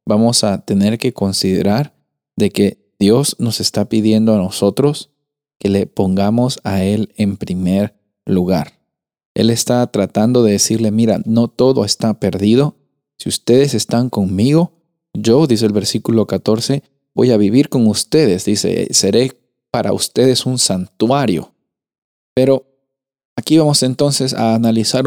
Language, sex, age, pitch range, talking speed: Spanish, male, 40-59, 105-130 Hz, 135 wpm